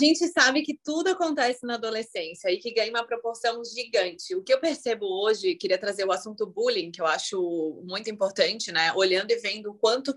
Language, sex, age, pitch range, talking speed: Vietnamese, female, 30-49, 185-230 Hz, 200 wpm